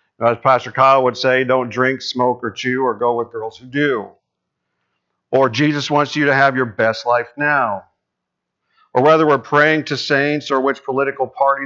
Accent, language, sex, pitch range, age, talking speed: American, English, male, 120-150 Hz, 50-69, 185 wpm